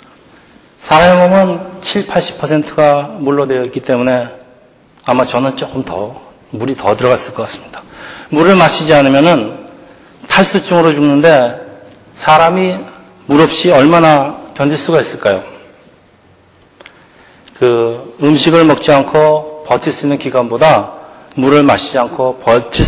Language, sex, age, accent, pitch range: Korean, male, 40-59, native, 130-165 Hz